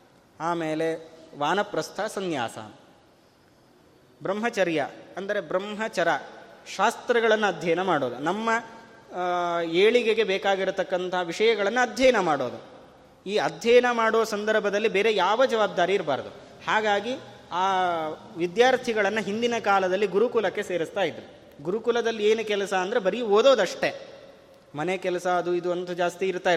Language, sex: Kannada, male